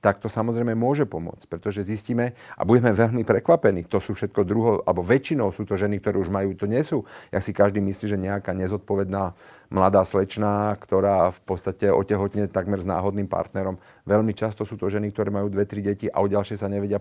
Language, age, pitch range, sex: Slovak, 40-59, 100-120 Hz, male